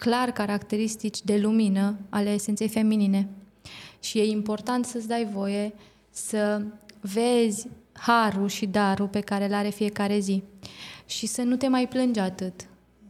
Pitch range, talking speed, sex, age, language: 200-220 Hz, 140 wpm, female, 20-39, Romanian